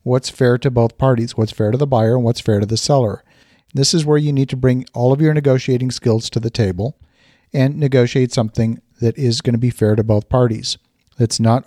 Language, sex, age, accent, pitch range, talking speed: English, male, 50-69, American, 115-135 Hz, 230 wpm